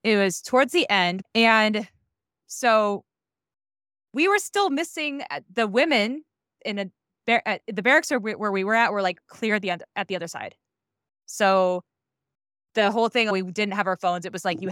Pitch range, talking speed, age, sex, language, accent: 185-255 Hz, 195 wpm, 20-39, female, English, American